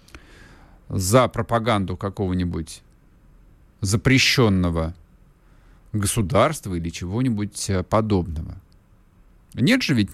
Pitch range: 90-135 Hz